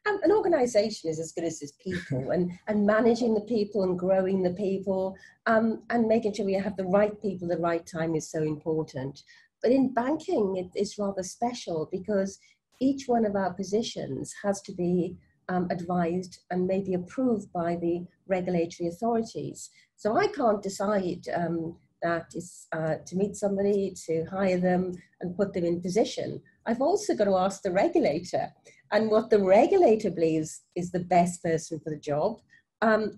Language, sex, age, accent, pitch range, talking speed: English, female, 40-59, British, 170-220 Hz, 175 wpm